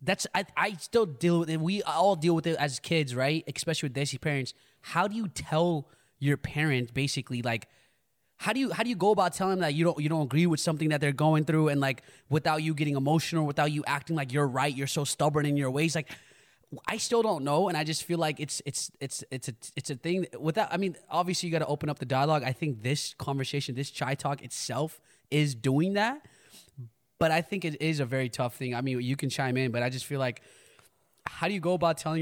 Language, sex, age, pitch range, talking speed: English, male, 20-39, 135-165 Hz, 250 wpm